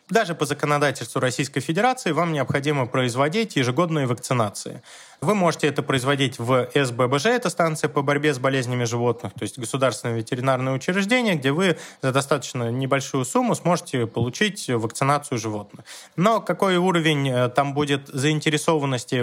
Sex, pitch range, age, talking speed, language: male, 130-165 Hz, 20-39, 135 wpm, Russian